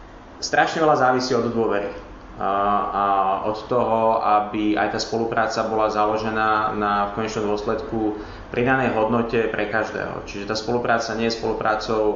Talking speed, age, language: 145 wpm, 20-39, Slovak